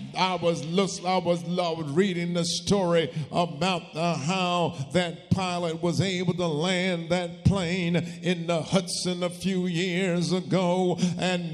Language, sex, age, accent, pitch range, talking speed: English, male, 50-69, American, 175-215 Hz, 140 wpm